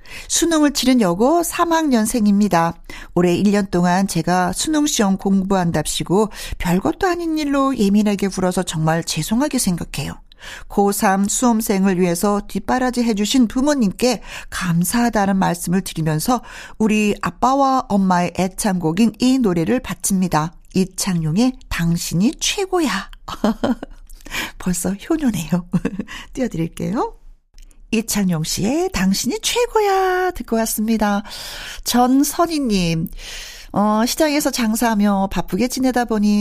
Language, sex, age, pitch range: Korean, female, 50-69, 185-265 Hz